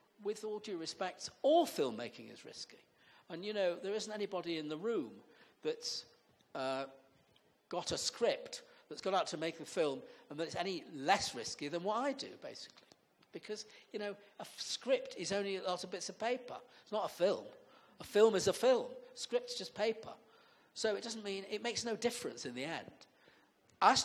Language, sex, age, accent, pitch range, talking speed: English, male, 50-69, British, 155-225 Hz, 195 wpm